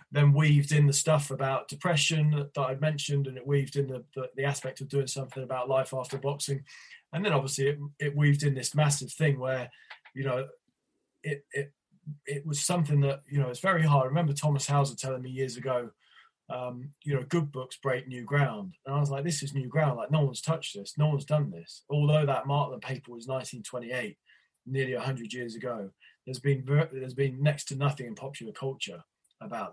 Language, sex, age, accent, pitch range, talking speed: English, male, 20-39, British, 130-145 Hz, 210 wpm